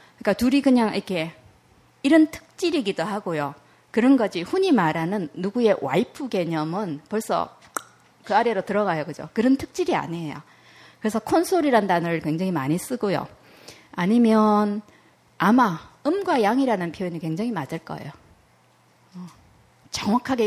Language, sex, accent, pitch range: Korean, female, native, 170-240 Hz